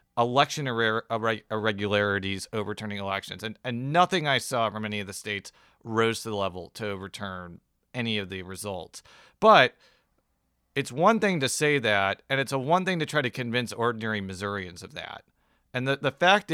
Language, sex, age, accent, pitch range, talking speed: English, male, 40-59, American, 105-140 Hz, 175 wpm